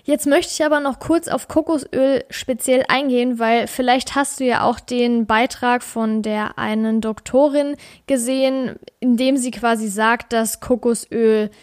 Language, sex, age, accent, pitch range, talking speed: German, female, 10-29, German, 230-275 Hz, 155 wpm